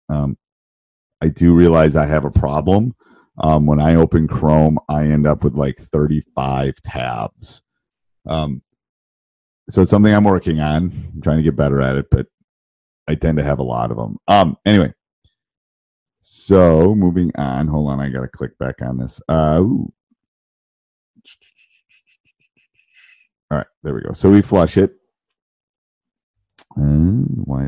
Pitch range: 75-100 Hz